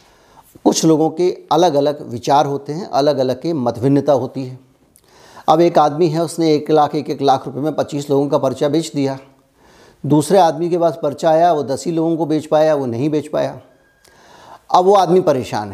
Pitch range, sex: 135-170 Hz, male